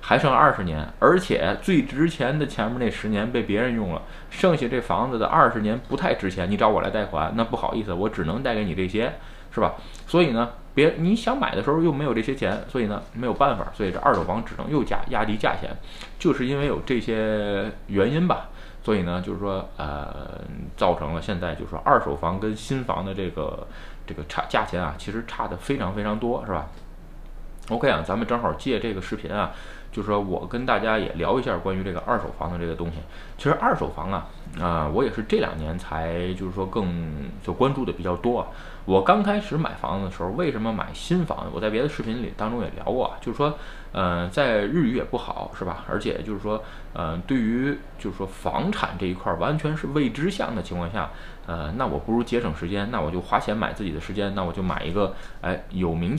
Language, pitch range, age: Chinese, 85-115 Hz, 20-39